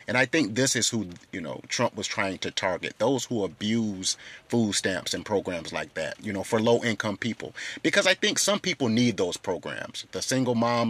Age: 30-49